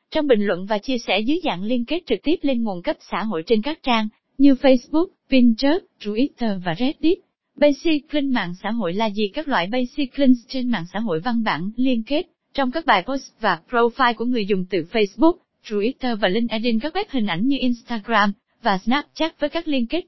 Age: 20-39